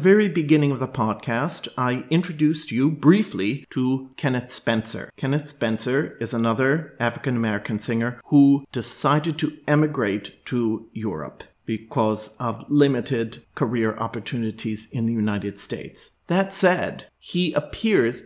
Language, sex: English, male